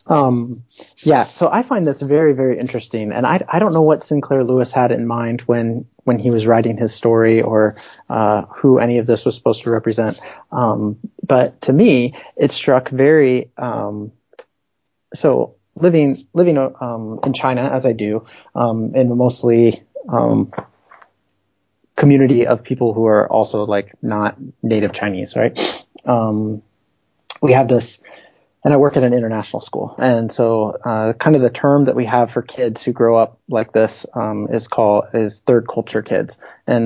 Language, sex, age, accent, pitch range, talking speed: English, male, 30-49, American, 110-130 Hz, 175 wpm